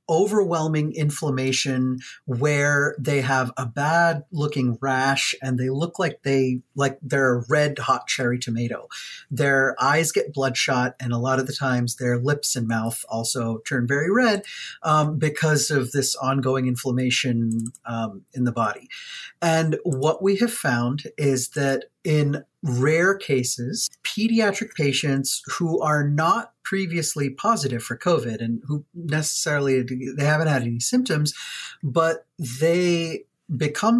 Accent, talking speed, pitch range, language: American, 145 wpm, 130-160 Hz, English